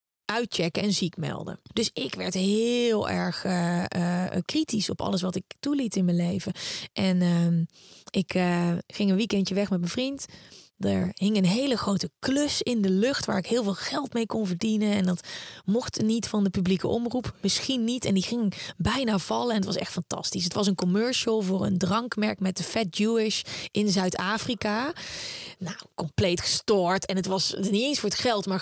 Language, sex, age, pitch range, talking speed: Dutch, female, 20-39, 180-210 Hz, 195 wpm